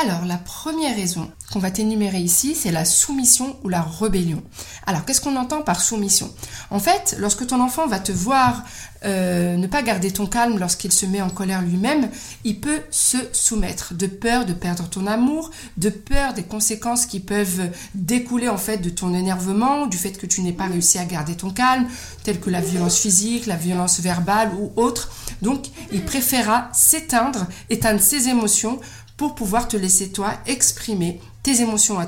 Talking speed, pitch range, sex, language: 185 wpm, 190-245 Hz, female, French